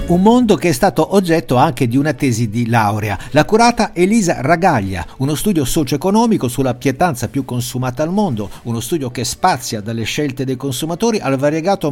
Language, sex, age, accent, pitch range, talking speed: Italian, male, 50-69, native, 120-175 Hz, 175 wpm